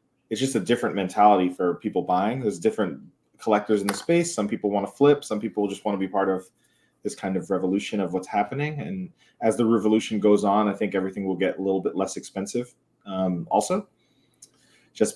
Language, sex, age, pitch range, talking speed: English, male, 30-49, 95-115 Hz, 210 wpm